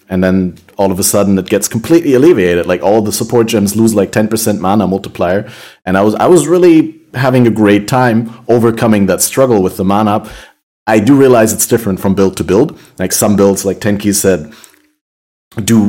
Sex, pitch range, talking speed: male, 95-115 Hz, 195 wpm